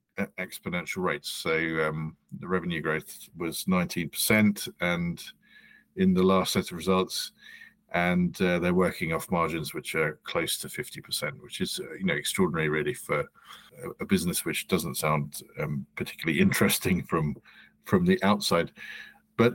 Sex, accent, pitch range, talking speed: male, British, 90-130 Hz, 145 wpm